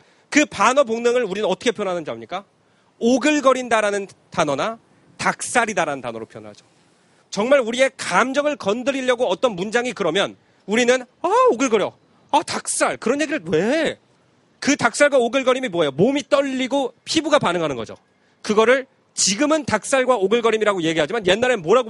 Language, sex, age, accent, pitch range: Korean, male, 40-59, native, 190-270 Hz